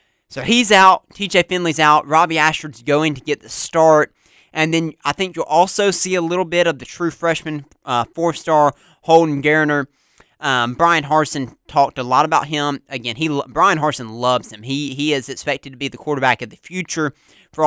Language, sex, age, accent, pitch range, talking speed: English, male, 30-49, American, 130-160 Hz, 195 wpm